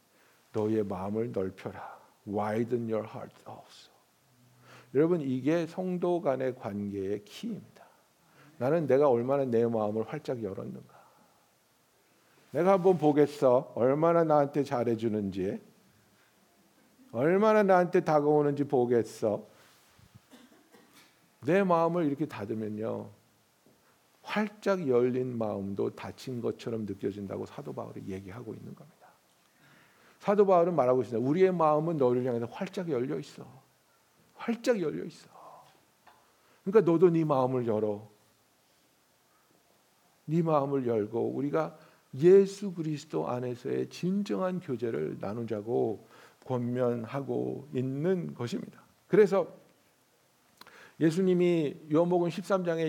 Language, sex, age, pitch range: Korean, male, 50-69, 115-175 Hz